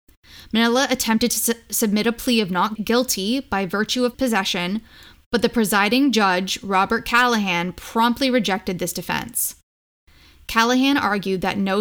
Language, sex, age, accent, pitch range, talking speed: English, female, 10-29, American, 185-230 Hz, 135 wpm